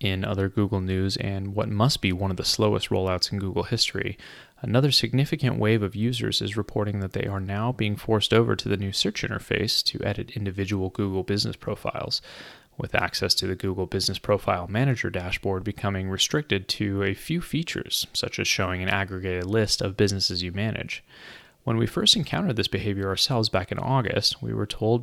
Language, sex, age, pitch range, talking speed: English, male, 20-39, 95-120 Hz, 190 wpm